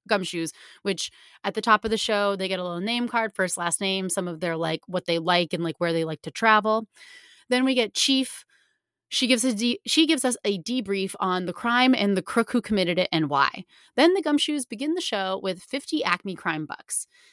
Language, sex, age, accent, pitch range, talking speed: English, female, 30-49, American, 185-250 Hz, 220 wpm